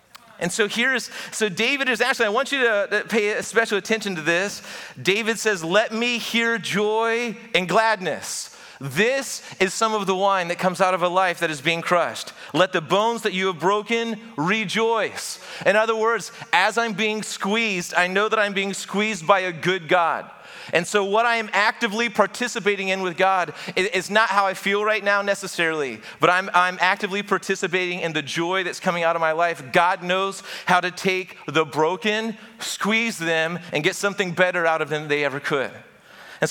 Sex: male